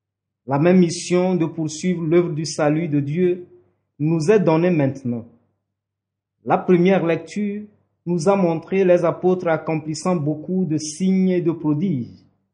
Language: French